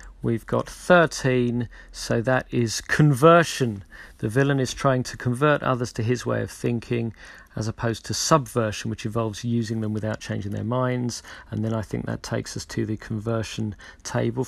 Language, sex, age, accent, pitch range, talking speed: English, male, 40-59, British, 110-135 Hz, 175 wpm